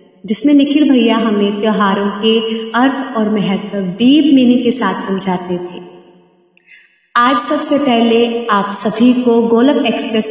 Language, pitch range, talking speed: Hindi, 195-235 Hz, 135 wpm